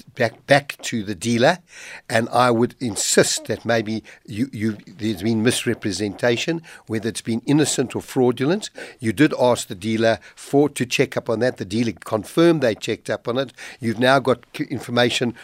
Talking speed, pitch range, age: 175 wpm, 110-135 Hz, 60-79